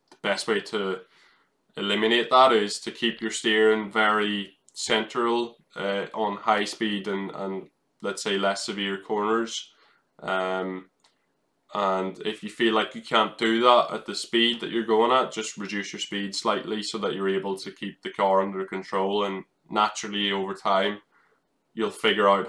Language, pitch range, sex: English, 95-110 Hz, male